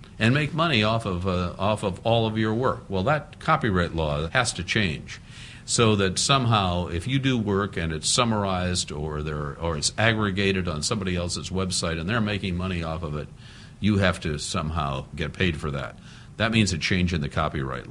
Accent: American